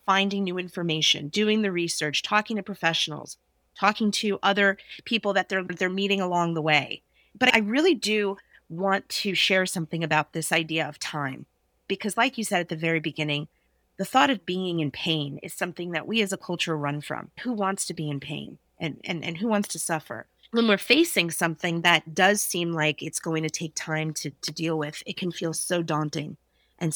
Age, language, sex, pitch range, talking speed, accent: 30-49, English, female, 155-195 Hz, 205 wpm, American